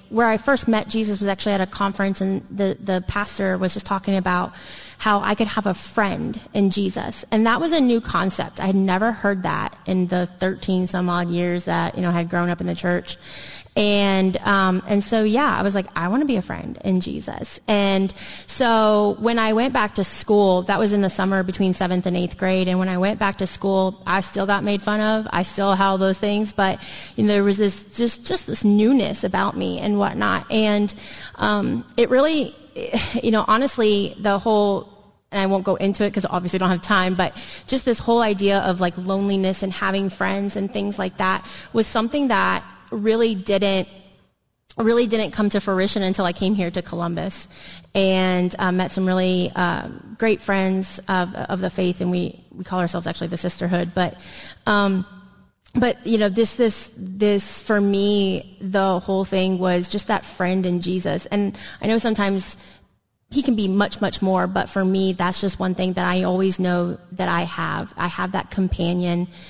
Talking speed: 205 wpm